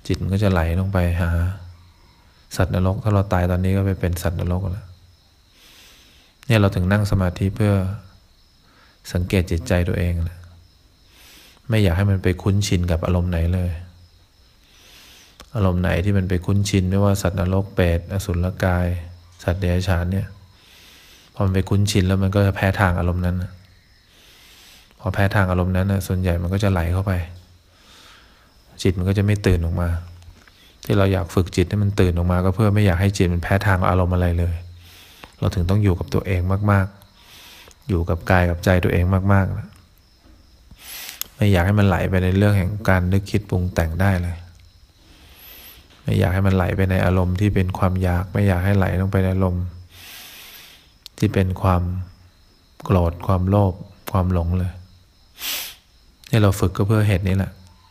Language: English